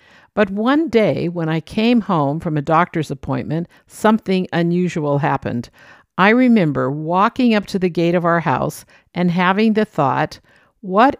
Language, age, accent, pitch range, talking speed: English, 50-69, American, 155-210 Hz, 155 wpm